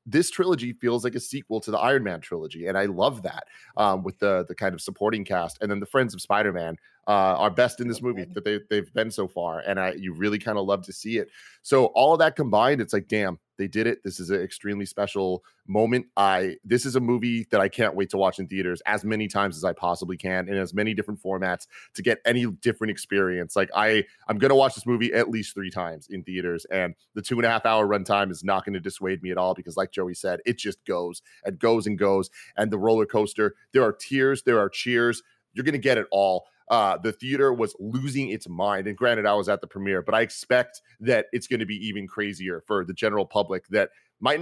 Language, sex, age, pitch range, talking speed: English, male, 30-49, 95-115 Hz, 250 wpm